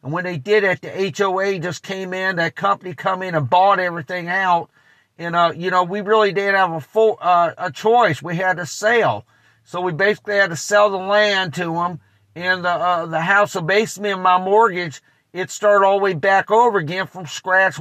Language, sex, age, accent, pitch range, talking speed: English, male, 50-69, American, 165-195 Hz, 215 wpm